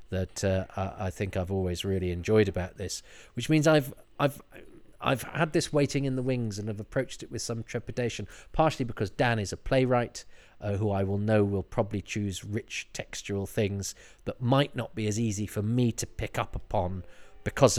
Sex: male